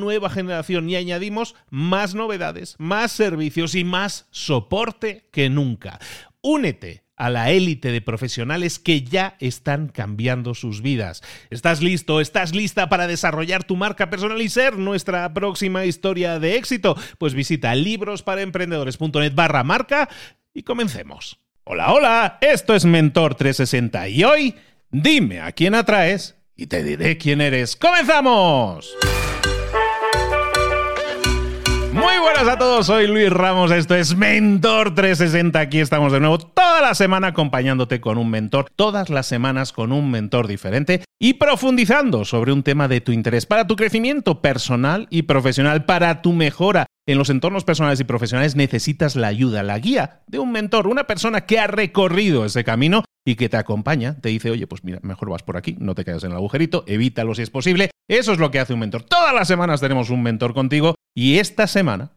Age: 40-59